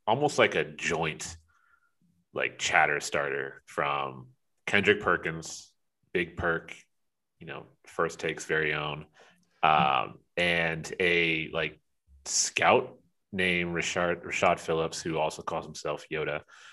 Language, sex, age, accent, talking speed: English, male, 30-49, American, 115 wpm